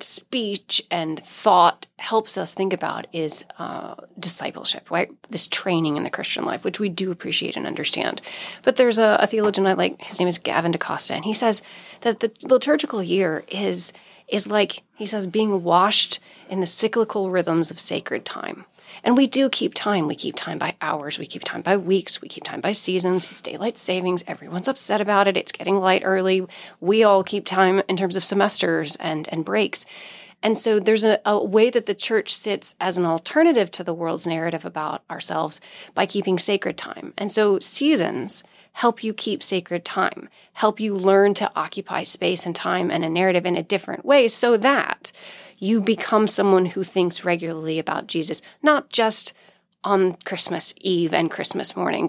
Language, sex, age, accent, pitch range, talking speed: English, female, 30-49, American, 180-220 Hz, 185 wpm